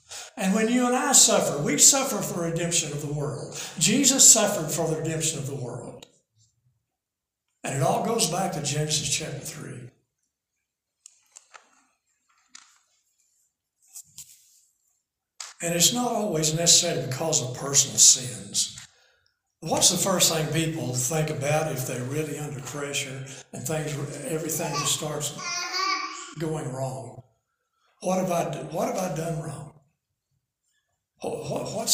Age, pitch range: 60-79, 145-190 Hz